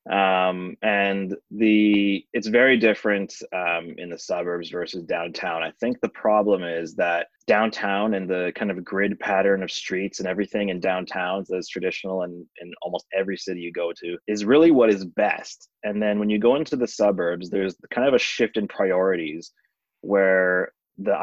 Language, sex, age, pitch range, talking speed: English, male, 20-39, 90-105 Hz, 180 wpm